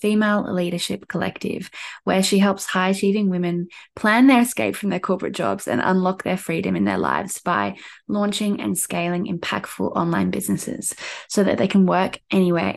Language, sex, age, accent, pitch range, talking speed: English, female, 10-29, Australian, 185-210 Hz, 165 wpm